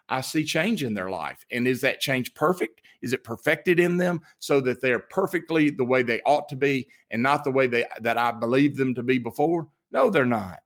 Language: English